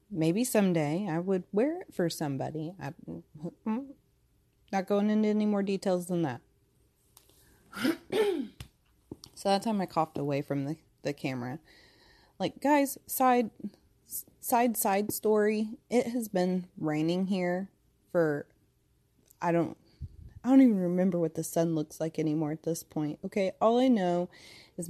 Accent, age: American, 30-49